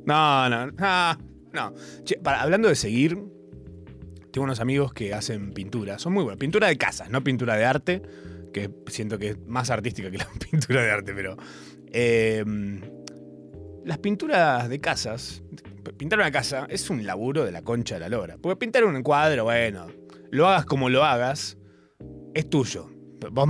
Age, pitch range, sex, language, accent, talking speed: 20-39, 100-150 Hz, male, Spanish, Argentinian, 170 wpm